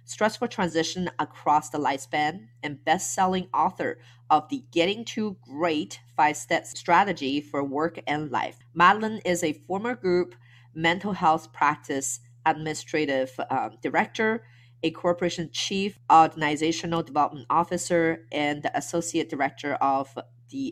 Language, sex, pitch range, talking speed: English, female, 135-175 Hz, 125 wpm